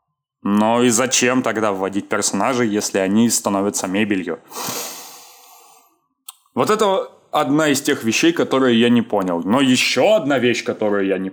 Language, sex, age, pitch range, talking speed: Russian, male, 20-39, 110-145 Hz, 145 wpm